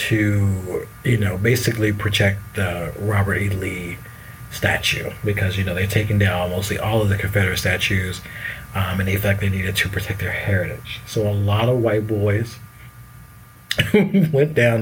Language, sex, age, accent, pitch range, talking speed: English, male, 30-49, American, 100-120 Hz, 165 wpm